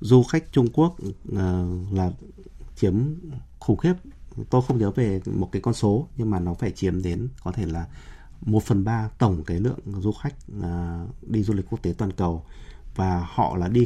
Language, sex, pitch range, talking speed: Vietnamese, male, 90-130 Hz, 190 wpm